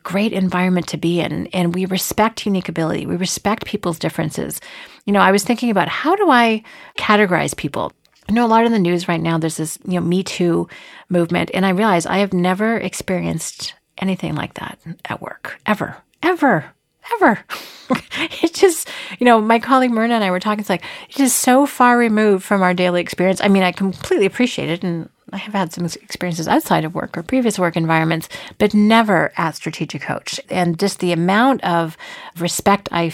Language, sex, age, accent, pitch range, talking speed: English, female, 40-59, American, 175-235 Hz, 200 wpm